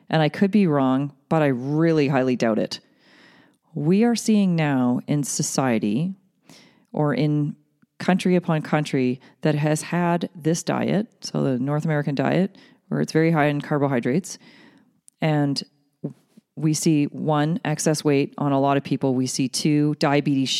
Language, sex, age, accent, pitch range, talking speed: English, female, 40-59, American, 145-190 Hz, 155 wpm